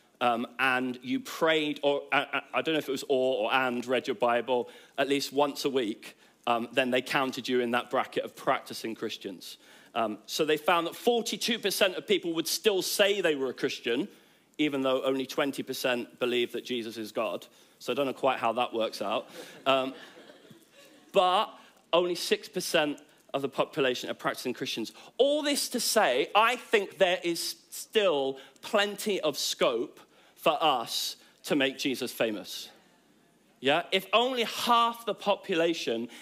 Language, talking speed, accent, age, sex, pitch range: English, 165 wpm, British, 40-59, male, 135-210 Hz